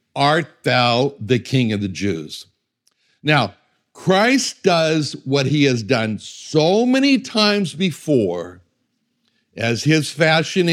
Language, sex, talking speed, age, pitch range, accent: English, male, 115 wpm, 60-79, 125-175 Hz, American